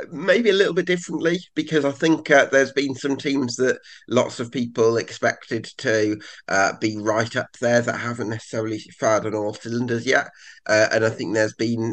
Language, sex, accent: English, male, British